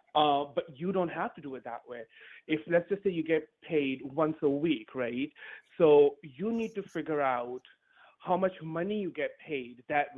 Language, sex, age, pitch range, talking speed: English, male, 30-49, 135-185 Hz, 200 wpm